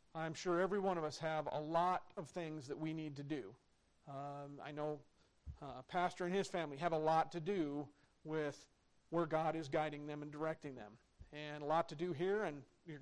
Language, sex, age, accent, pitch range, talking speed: English, male, 40-59, American, 155-190 Hz, 210 wpm